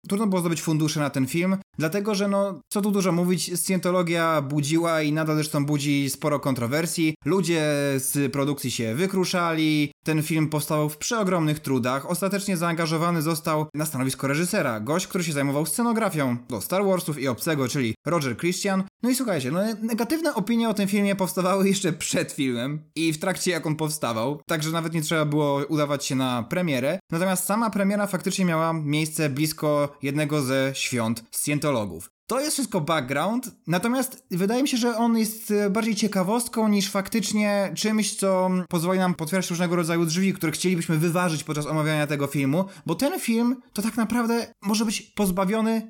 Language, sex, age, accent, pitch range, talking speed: Polish, male, 20-39, native, 150-195 Hz, 170 wpm